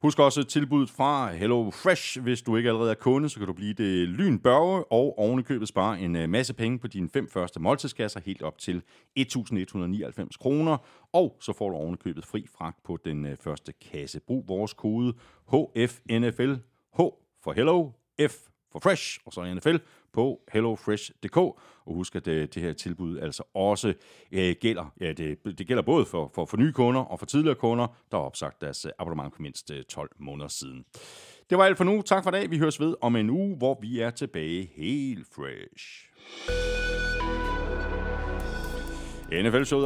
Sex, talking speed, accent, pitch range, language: male, 175 wpm, native, 95-150 Hz, Danish